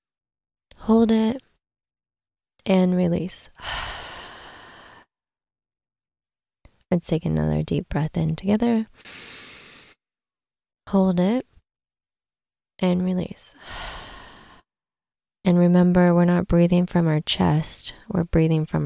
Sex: female